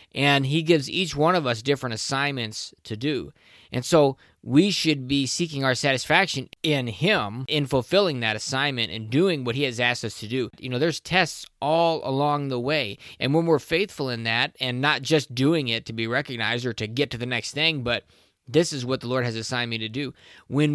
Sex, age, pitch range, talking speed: male, 20-39, 125-155 Hz, 215 wpm